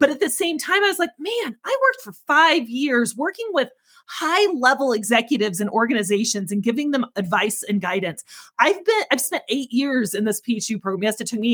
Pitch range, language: 210-275 Hz, English